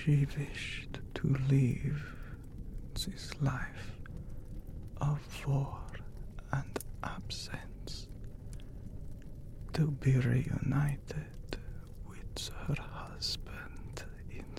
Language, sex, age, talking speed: English, male, 60-79, 70 wpm